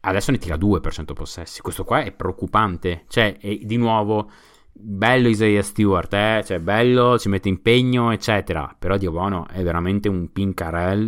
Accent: native